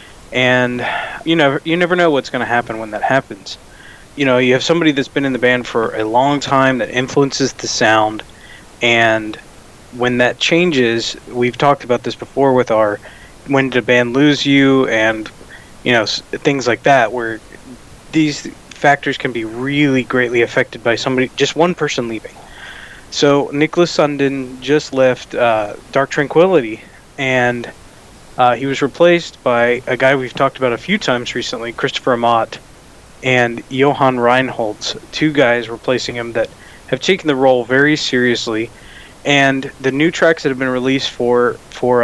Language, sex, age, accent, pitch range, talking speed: English, male, 20-39, American, 120-140 Hz, 165 wpm